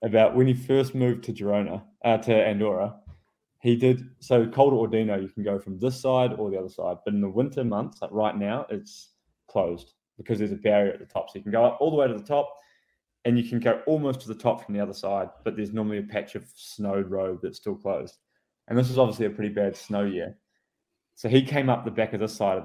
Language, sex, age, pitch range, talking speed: English, male, 20-39, 100-120 Hz, 250 wpm